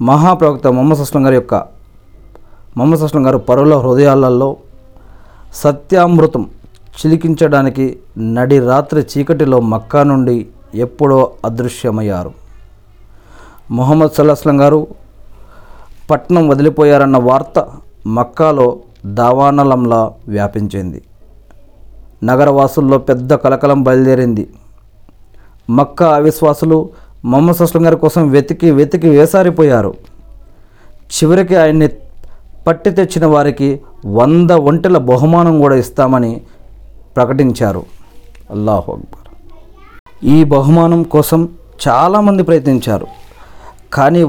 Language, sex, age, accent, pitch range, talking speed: Telugu, male, 40-59, native, 110-155 Hz, 80 wpm